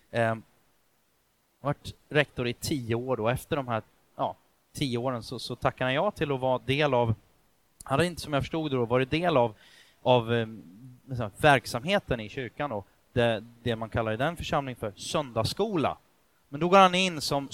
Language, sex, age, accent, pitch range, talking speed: Swedish, male, 30-49, native, 125-175 Hz, 180 wpm